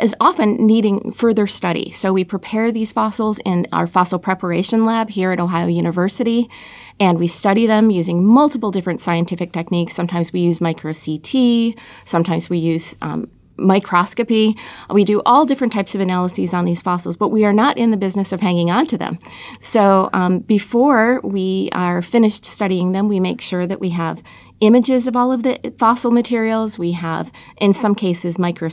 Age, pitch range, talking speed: 30-49, 175-220 Hz, 180 wpm